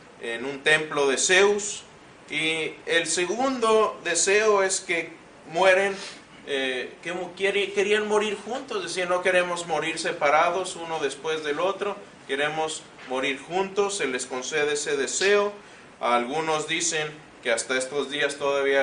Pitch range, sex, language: 150-200 Hz, male, Spanish